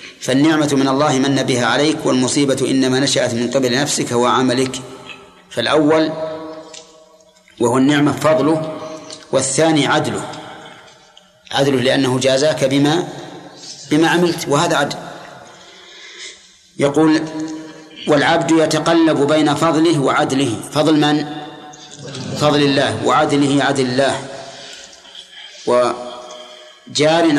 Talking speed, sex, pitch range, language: 90 wpm, male, 130-155 Hz, Arabic